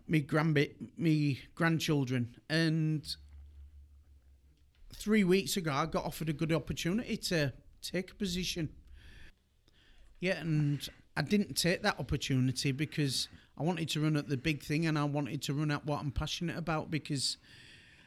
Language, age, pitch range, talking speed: English, 40-59, 135-160 Hz, 155 wpm